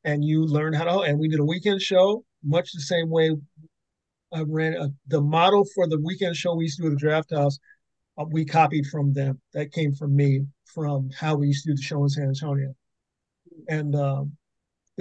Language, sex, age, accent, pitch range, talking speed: English, male, 40-59, American, 145-165 Hz, 210 wpm